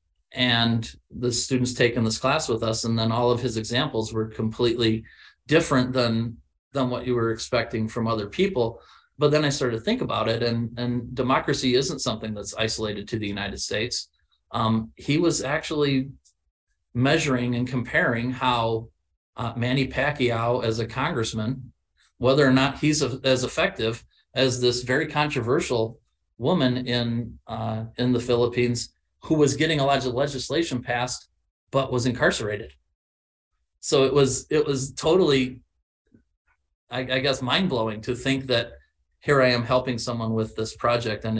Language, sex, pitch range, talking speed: English, male, 110-130 Hz, 160 wpm